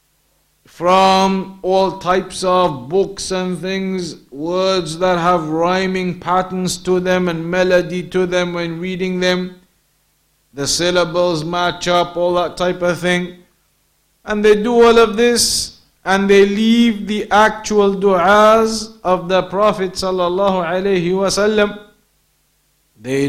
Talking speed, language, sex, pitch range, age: 120 wpm, English, male, 165-195 Hz, 50-69